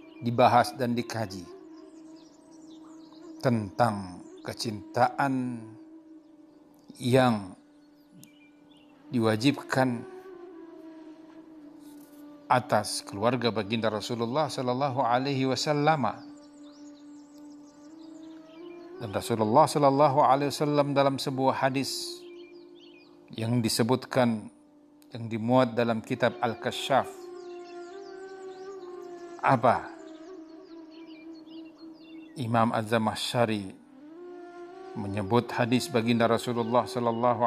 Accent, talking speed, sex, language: native, 60 wpm, male, Indonesian